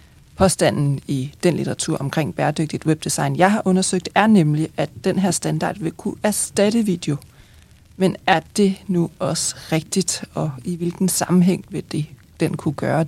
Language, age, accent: Danish, 40-59, native